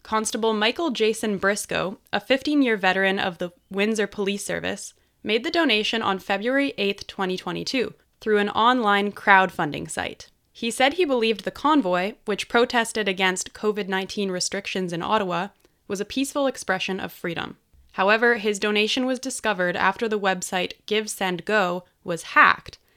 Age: 20-39